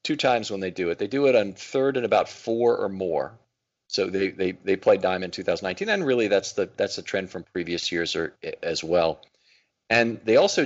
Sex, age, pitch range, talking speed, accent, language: male, 40-59, 90-110 Hz, 220 wpm, American, English